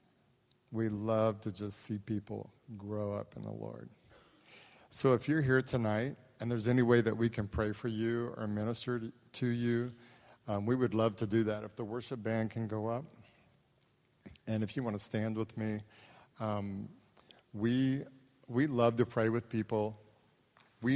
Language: English